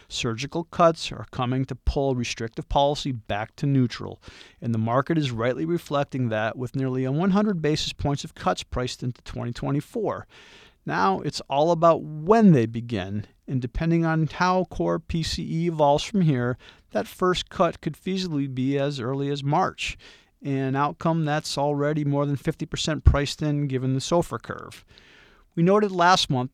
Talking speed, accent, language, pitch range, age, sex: 160 wpm, American, English, 120-150 Hz, 40-59, male